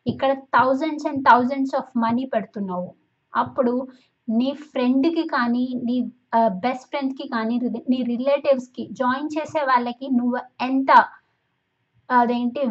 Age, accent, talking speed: 20-39, native, 115 wpm